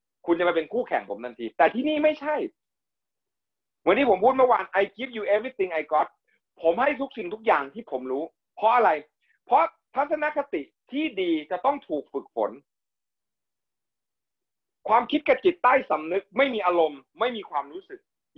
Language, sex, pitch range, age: Thai, male, 185-285 Hz, 30-49